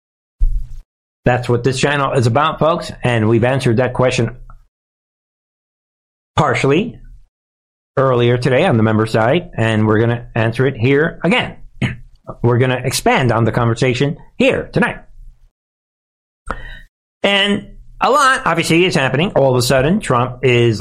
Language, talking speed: English, 140 wpm